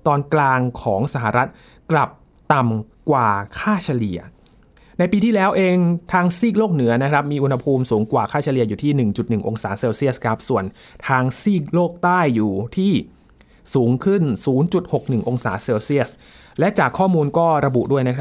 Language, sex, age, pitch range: Thai, male, 20-39, 115-155 Hz